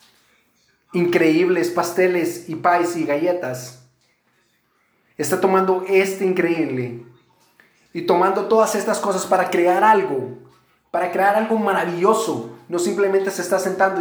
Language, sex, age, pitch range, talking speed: English, male, 30-49, 180-210 Hz, 115 wpm